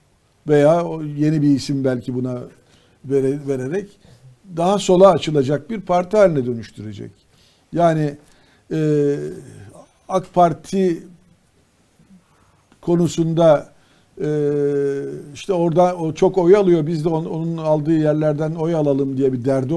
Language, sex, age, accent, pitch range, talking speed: Turkish, male, 50-69, native, 135-175 Hz, 100 wpm